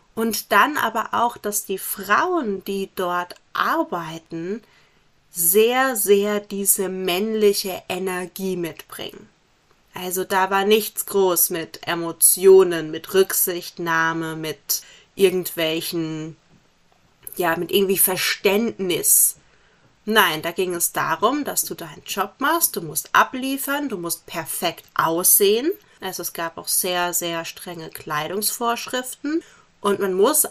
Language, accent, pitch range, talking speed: German, German, 175-235 Hz, 115 wpm